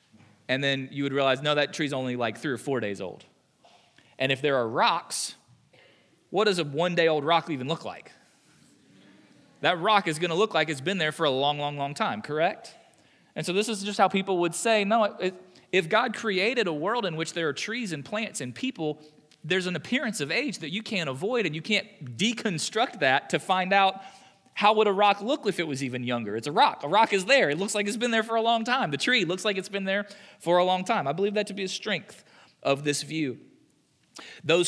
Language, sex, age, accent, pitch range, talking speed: English, male, 20-39, American, 145-200 Hz, 235 wpm